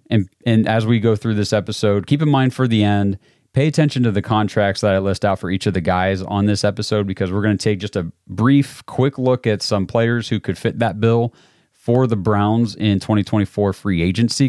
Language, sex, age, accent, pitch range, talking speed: English, male, 30-49, American, 95-120 Hz, 230 wpm